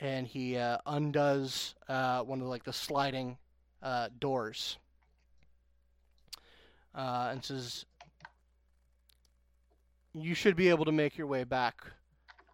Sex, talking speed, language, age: male, 125 wpm, English, 30-49